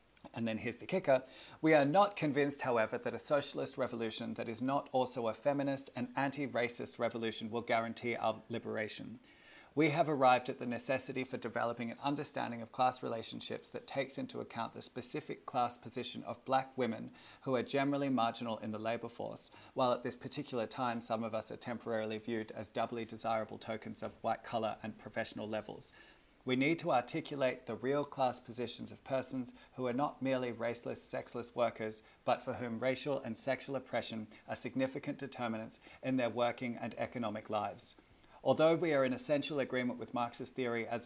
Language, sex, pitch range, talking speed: English, male, 115-135 Hz, 180 wpm